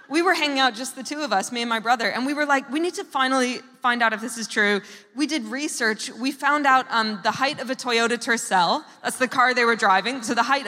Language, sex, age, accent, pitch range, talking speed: English, female, 20-39, American, 240-330 Hz, 275 wpm